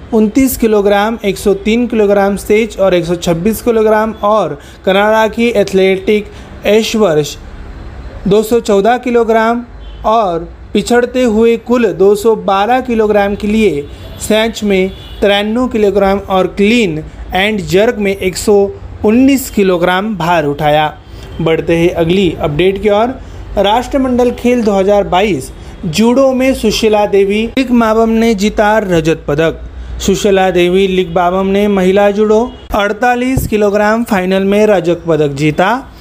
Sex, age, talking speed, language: male, 30-49, 115 wpm, Marathi